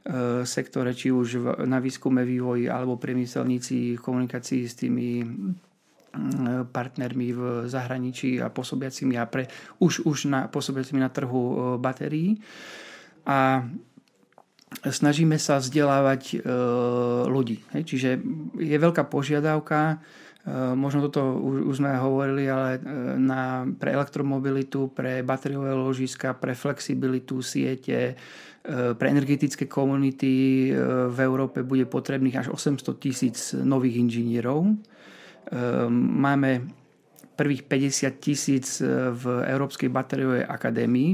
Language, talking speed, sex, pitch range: Slovak, 100 wpm, male, 125-140 Hz